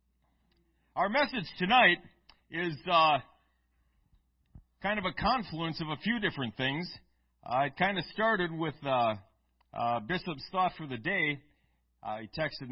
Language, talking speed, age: English, 140 wpm, 40-59